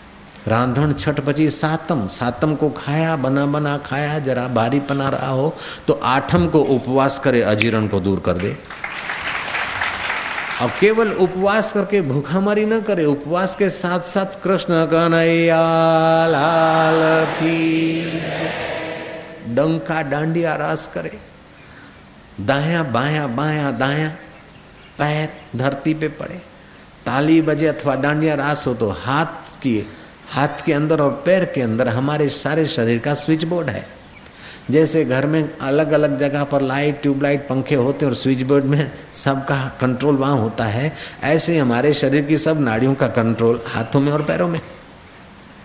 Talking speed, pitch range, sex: 140 wpm, 130-160 Hz, male